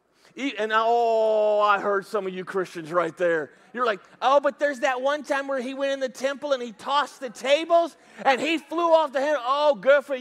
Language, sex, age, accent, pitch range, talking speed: English, male, 40-59, American, 205-275 Hz, 225 wpm